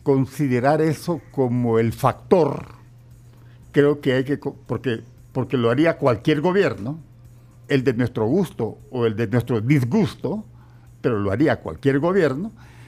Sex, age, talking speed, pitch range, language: male, 60-79, 135 wpm, 120-150 Hz, Spanish